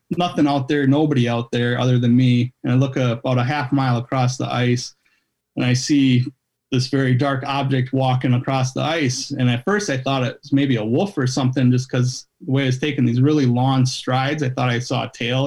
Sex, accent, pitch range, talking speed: male, American, 125-140 Hz, 225 wpm